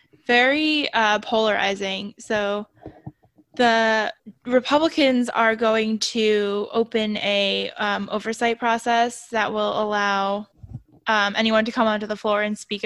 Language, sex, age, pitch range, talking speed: English, female, 10-29, 205-225 Hz, 120 wpm